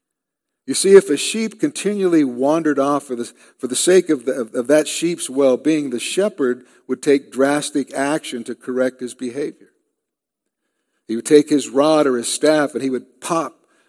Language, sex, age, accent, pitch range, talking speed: English, male, 50-69, American, 115-140 Hz, 175 wpm